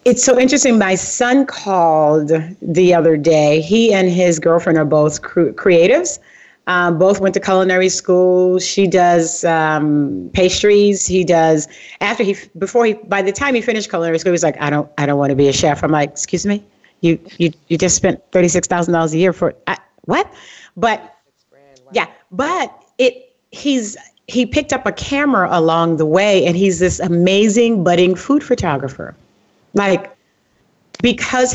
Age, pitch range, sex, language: 40-59, 175-240 Hz, female, English